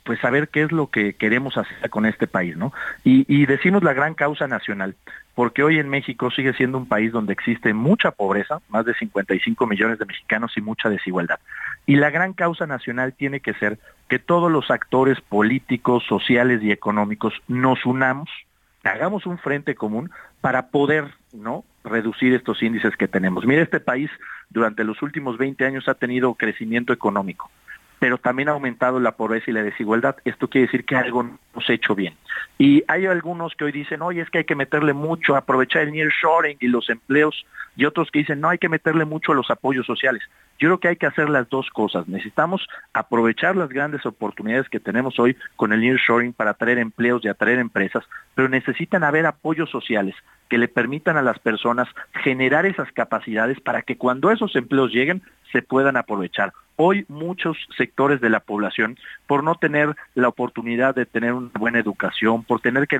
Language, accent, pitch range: Spanish, Mexican, 115-150 Hz